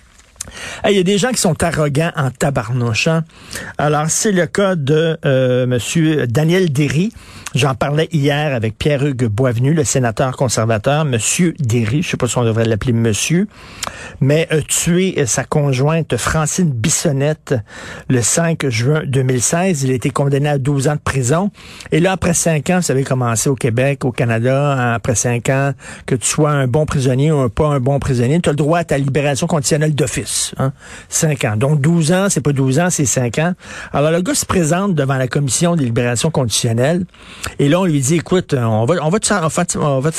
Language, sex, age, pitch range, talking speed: French, male, 50-69, 125-165 Hz, 205 wpm